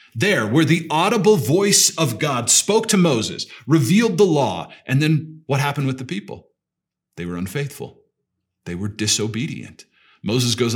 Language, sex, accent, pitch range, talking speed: English, male, American, 115-160 Hz, 155 wpm